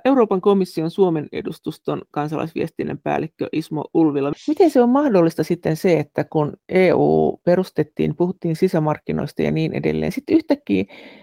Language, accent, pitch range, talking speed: Finnish, native, 150-195 Hz, 135 wpm